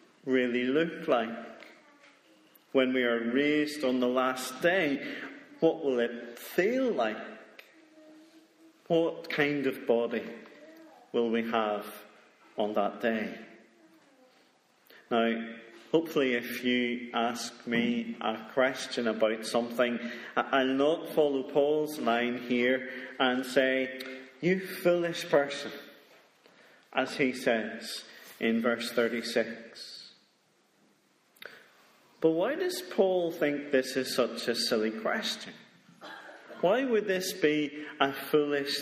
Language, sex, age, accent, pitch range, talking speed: English, male, 40-59, British, 120-160 Hz, 110 wpm